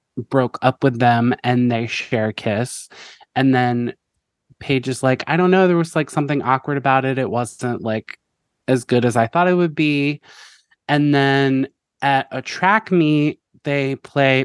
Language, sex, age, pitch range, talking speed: English, male, 20-39, 120-135 Hz, 180 wpm